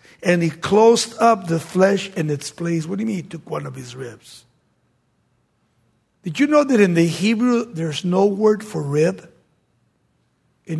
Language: English